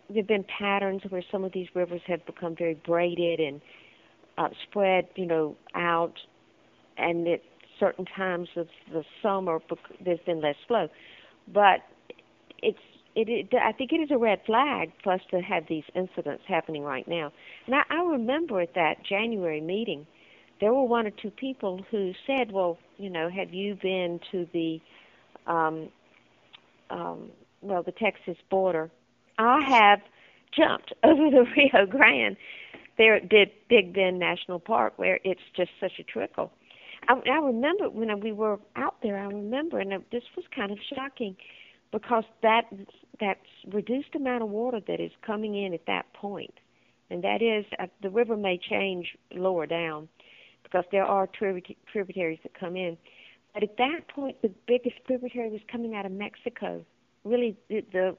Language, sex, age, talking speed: English, female, 50-69, 165 wpm